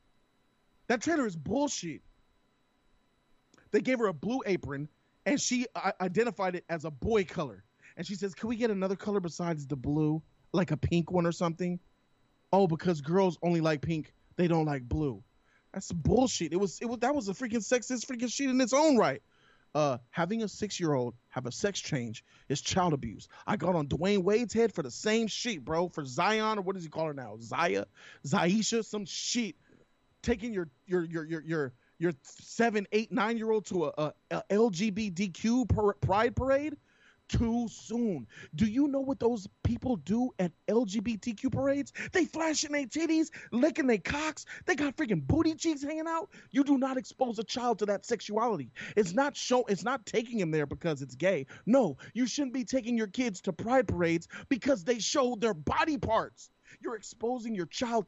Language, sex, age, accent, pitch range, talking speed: English, male, 20-39, American, 170-245 Hz, 185 wpm